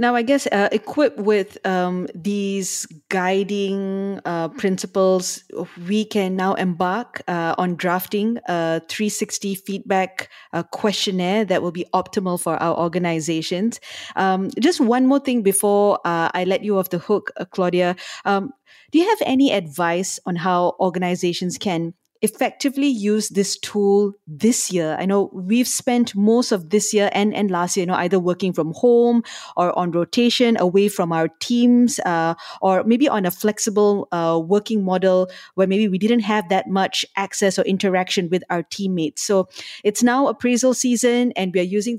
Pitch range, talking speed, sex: 180-215 Hz, 165 wpm, female